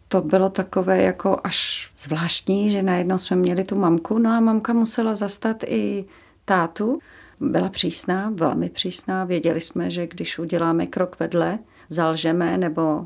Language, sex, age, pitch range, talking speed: Czech, female, 40-59, 175-215 Hz, 145 wpm